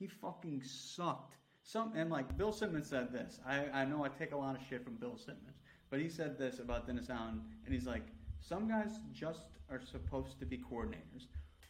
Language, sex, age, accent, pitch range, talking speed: English, male, 30-49, American, 120-175 Hz, 200 wpm